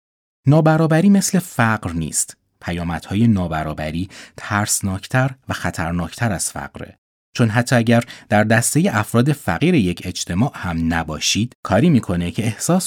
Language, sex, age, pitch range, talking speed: Persian, male, 30-49, 85-130 Hz, 120 wpm